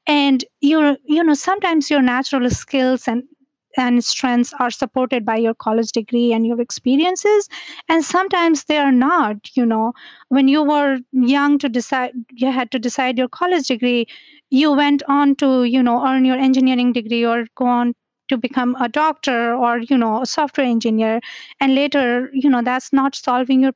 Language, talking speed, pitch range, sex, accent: English, 180 wpm, 235-275 Hz, female, Indian